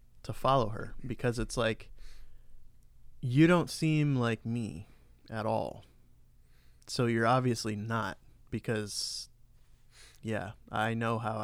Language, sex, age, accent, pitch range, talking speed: English, male, 20-39, American, 110-130 Hz, 115 wpm